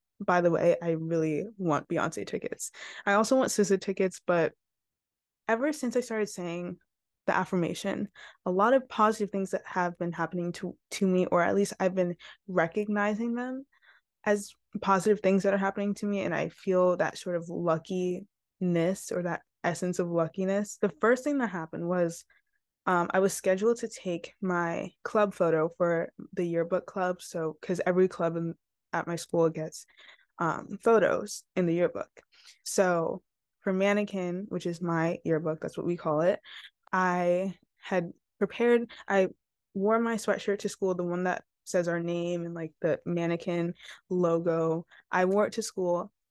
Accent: American